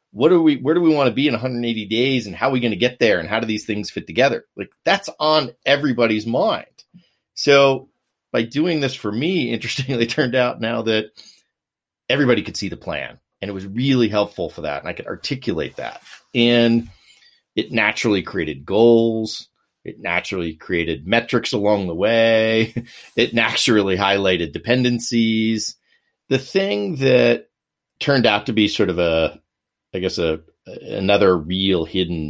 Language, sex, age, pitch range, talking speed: English, male, 30-49, 105-125 Hz, 175 wpm